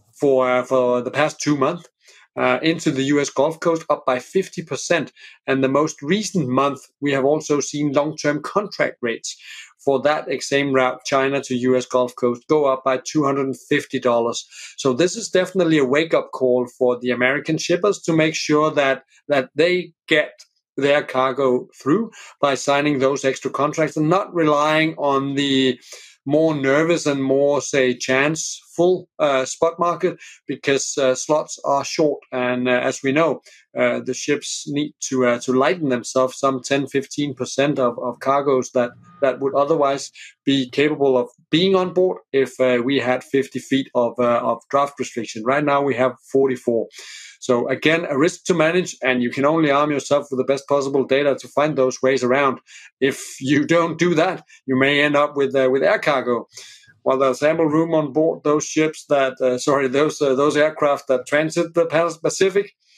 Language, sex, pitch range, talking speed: English, male, 130-150 Hz, 175 wpm